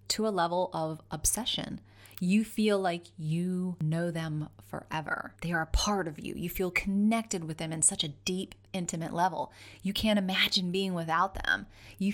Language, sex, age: English, female, 30-49